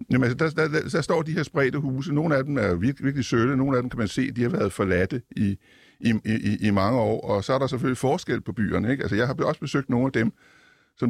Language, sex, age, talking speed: Danish, male, 60-79, 280 wpm